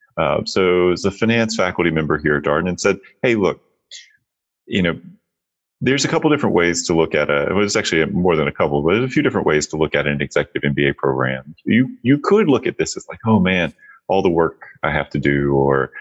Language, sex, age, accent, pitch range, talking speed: English, male, 30-49, American, 80-105 Hz, 235 wpm